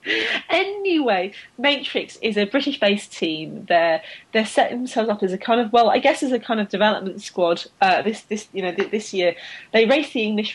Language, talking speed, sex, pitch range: English, 210 wpm, female, 190-245 Hz